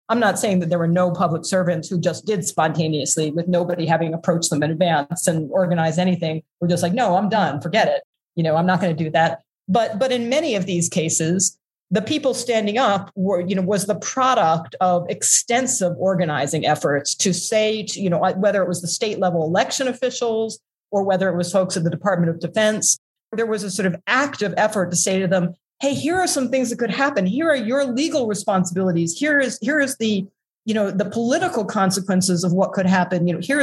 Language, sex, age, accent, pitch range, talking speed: English, female, 40-59, American, 175-225 Hz, 220 wpm